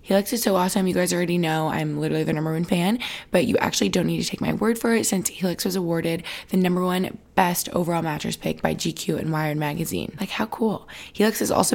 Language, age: English, 20-39